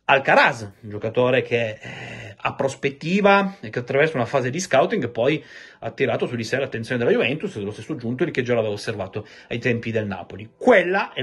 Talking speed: 190 wpm